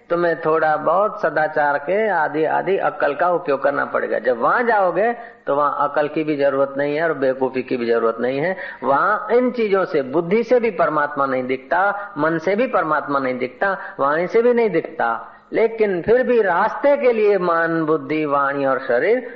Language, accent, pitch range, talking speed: Hindi, native, 155-235 Hz, 195 wpm